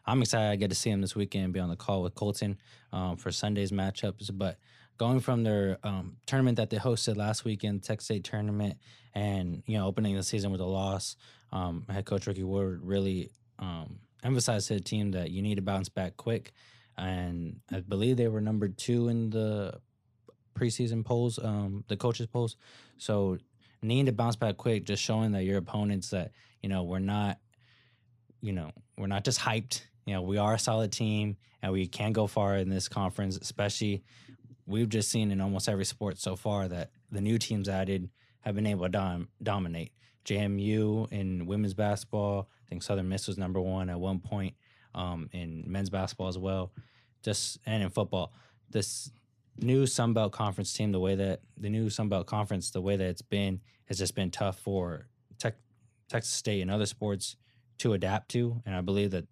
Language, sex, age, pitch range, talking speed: English, male, 20-39, 95-115 Hz, 195 wpm